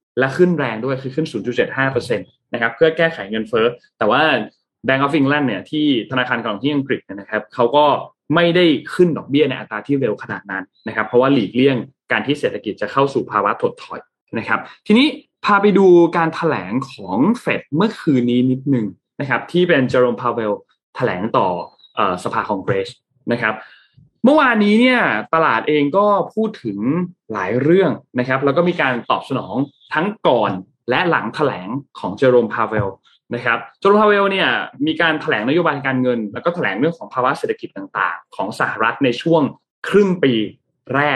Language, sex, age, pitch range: Thai, male, 20-39, 120-175 Hz